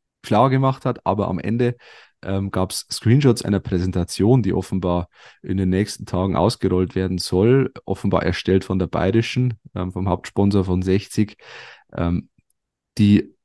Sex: male